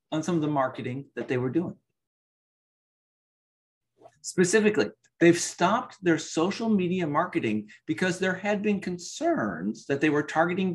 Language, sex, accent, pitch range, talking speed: English, male, American, 140-190 Hz, 140 wpm